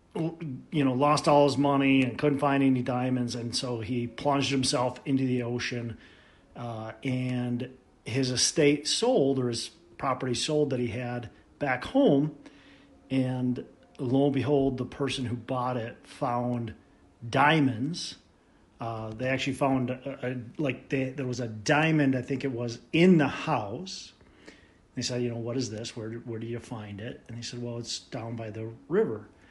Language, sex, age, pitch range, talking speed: English, male, 40-59, 120-140 Hz, 175 wpm